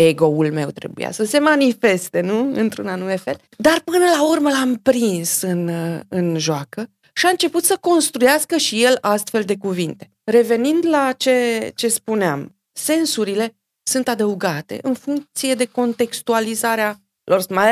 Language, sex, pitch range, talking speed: Romanian, female, 185-245 Hz, 145 wpm